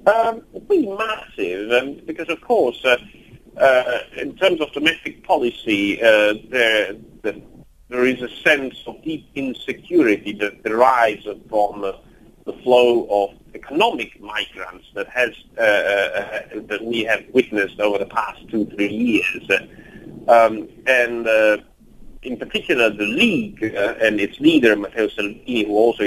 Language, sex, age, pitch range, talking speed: English, male, 40-59, 105-165 Hz, 145 wpm